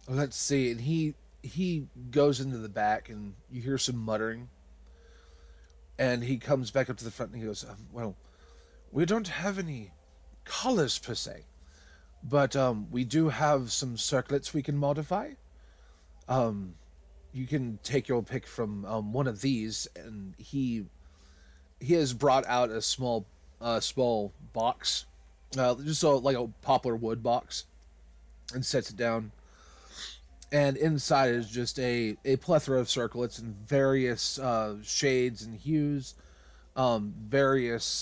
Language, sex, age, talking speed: English, male, 30-49, 155 wpm